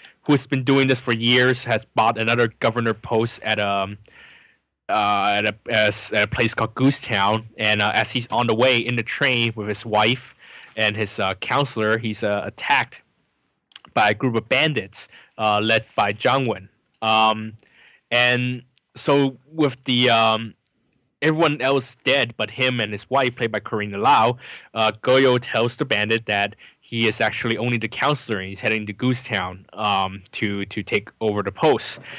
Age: 20-39